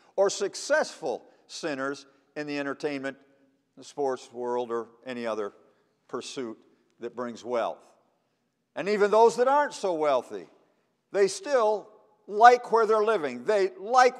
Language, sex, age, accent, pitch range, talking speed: English, male, 50-69, American, 160-250 Hz, 130 wpm